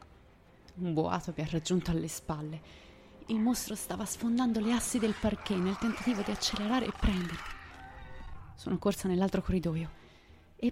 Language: Italian